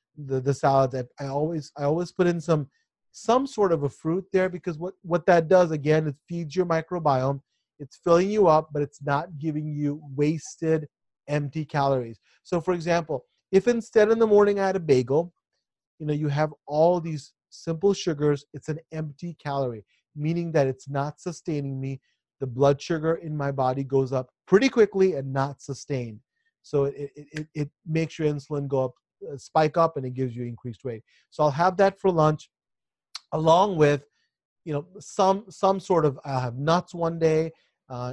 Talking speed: 185 wpm